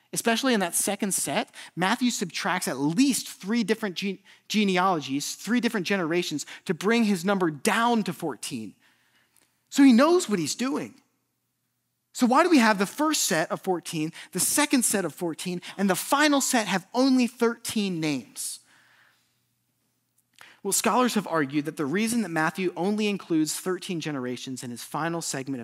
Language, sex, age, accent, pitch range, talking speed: English, male, 30-49, American, 150-215 Hz, 160 wpm